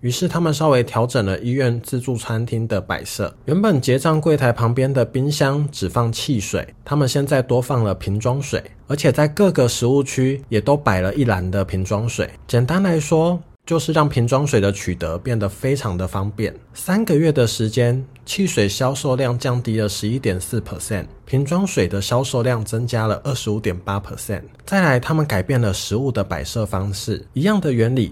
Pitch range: 105-140 Hz